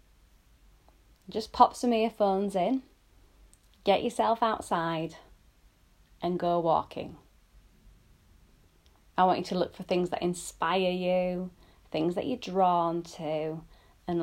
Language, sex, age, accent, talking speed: English, female, 20-39, British, 115 wpm